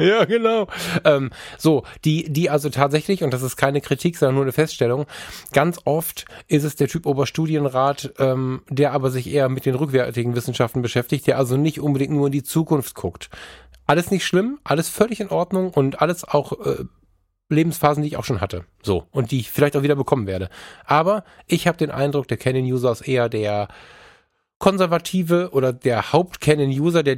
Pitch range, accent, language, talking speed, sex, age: 125-155 Hz, German, German, 185 wpm, male, 10-29